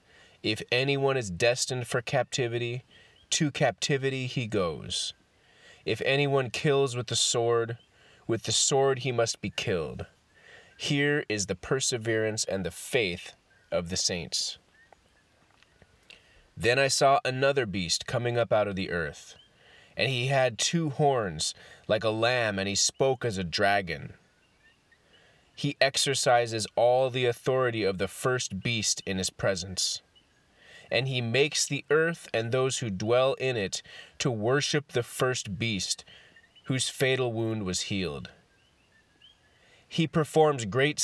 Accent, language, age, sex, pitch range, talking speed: American, English, 30-49, male, 110-140 Hz, 135 wpm